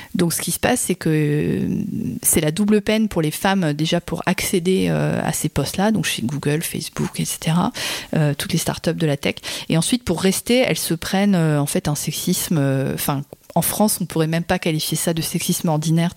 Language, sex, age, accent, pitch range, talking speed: French, female, 40-59, French, 155-190 Hz, 225 wpm